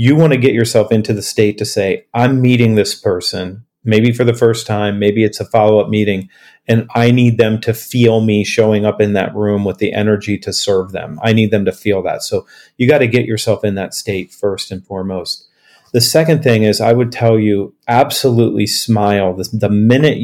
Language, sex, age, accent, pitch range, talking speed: English, male, 40-59, American, 105-120 Hz, 215 wpm